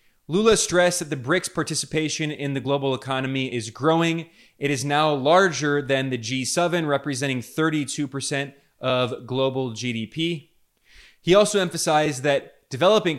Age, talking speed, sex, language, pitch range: 20-39, 130 wpm, male, English, 135-165 Hz